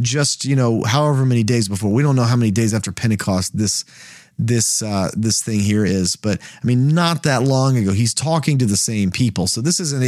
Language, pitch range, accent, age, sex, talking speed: English, 110-145 Hz, American, 30-49, male, 225 wpm